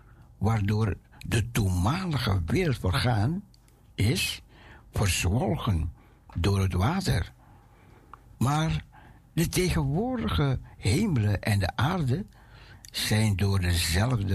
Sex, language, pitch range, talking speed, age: male, Dutch, 100-135 Hz, 75 wpm, 60-79